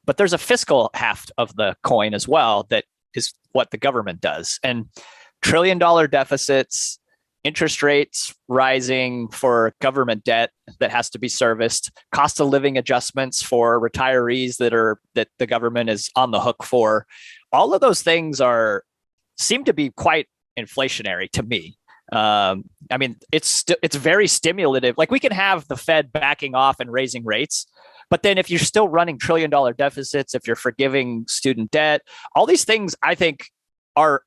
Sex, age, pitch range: male, 30-49, 125-160 Hz